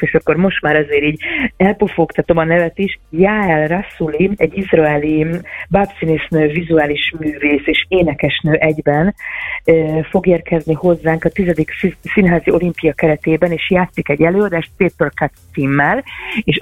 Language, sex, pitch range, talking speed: Hungarian, female, 155-185 Hz, 125 wpm